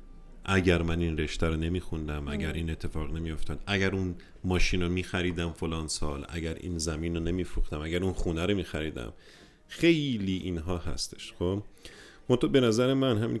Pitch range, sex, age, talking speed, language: 80-100 Hz, male, 40-59, 160 wpm, Persian